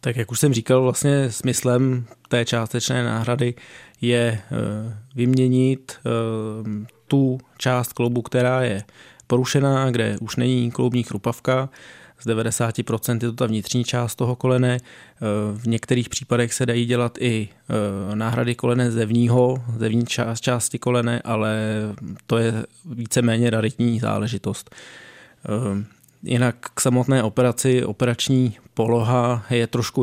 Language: Czech